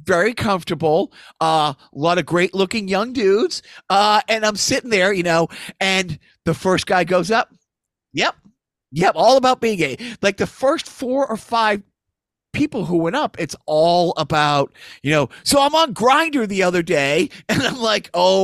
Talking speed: 180 wpm